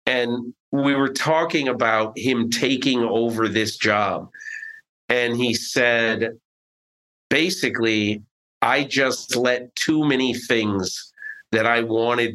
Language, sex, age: English, male, 40-59